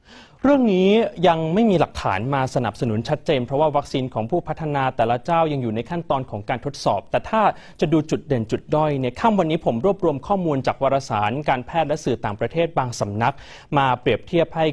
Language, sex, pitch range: Thai, male, 130-175 Hz